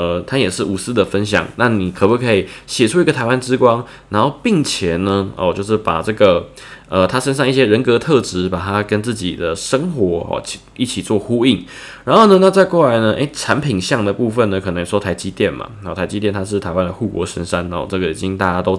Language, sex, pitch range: Chinese, male, 95-125 Hz